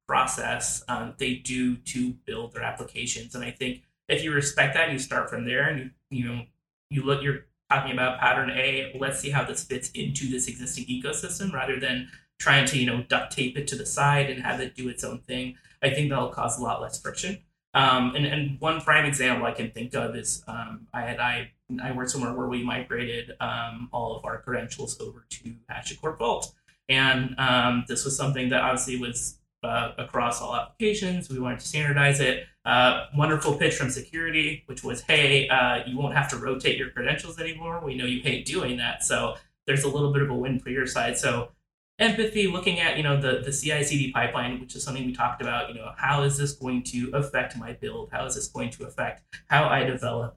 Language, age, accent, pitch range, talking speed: English, 20-39, American, 125-140 Hz, 220 wpm